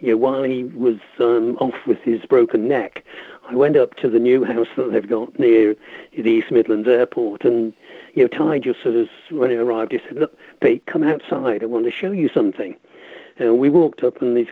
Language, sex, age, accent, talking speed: English, male, 60-79, British, 225 wpm